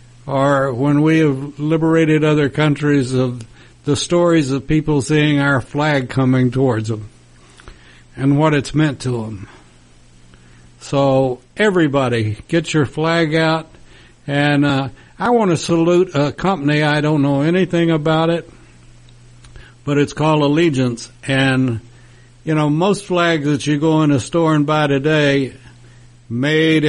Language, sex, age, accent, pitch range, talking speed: English, male, 60-79, American, 125-155 Hz, 140 wpm